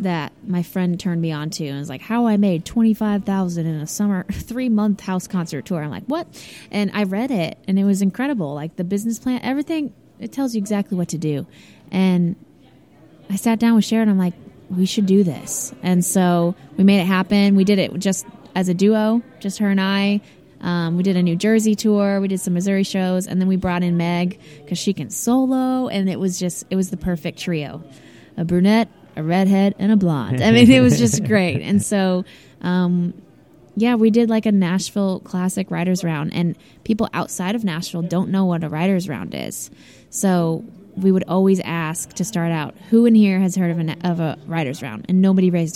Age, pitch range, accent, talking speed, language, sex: 20-39, 170-200 Hz, American, 215 wpm, English, female